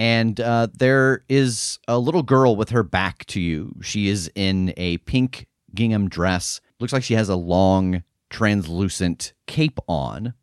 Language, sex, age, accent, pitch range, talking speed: English, male, 30-49, American, 95-125 Hz, 160 wpm